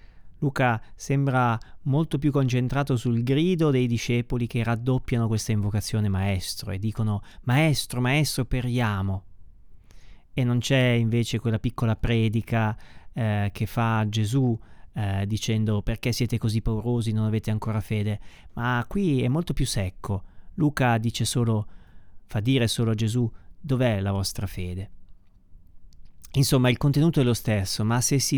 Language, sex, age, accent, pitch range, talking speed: Italian, male, 30-49, native, 105-130 Hz, 140 wpm